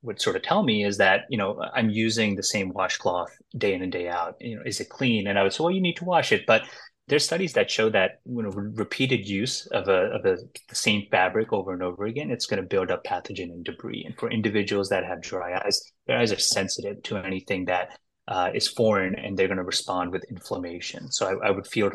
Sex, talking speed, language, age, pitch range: male, 250 wpm, English, 30-49, 95-115 Hz